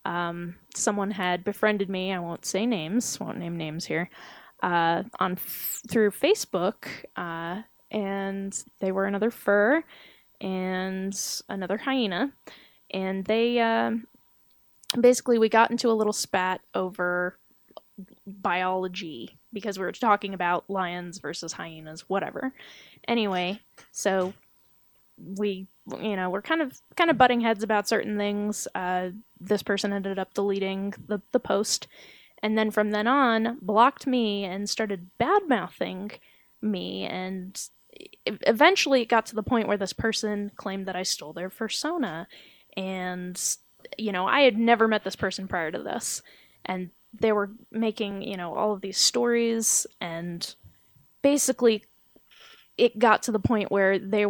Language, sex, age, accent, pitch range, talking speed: English, female, 10-29, American, 185-225 Hz, 145 wpm